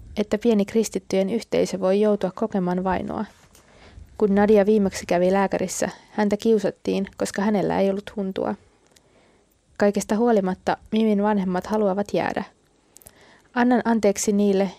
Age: 20-39